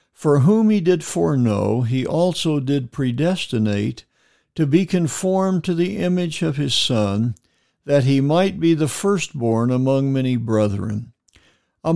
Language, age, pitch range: English, 60-79, 120-170 Hz